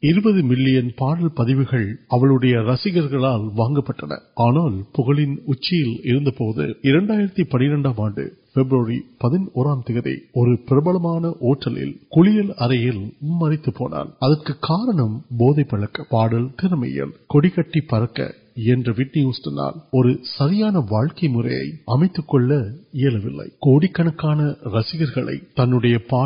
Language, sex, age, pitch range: Urdu, male, 50-69, 120-155 Hz